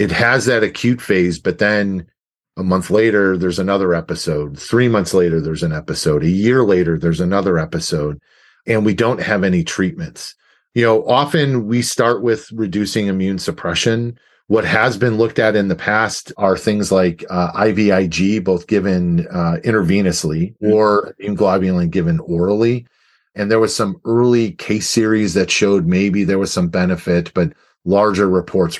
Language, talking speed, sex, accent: English, 165 wpm, male, American